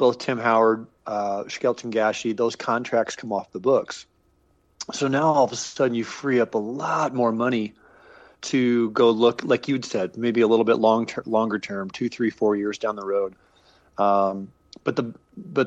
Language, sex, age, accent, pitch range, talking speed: English, male, 40-59, American, 105-130 Hz, 190 wpm